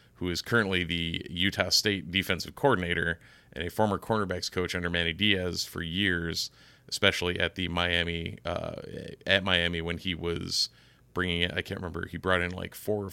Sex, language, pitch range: male, English, 85-100 Hz